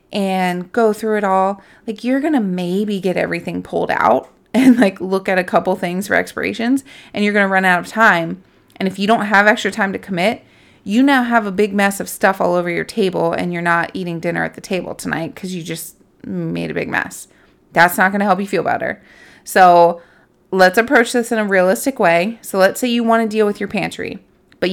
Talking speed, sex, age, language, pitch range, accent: 230 wpm, female, 30-49, English, 175-205 Hz, American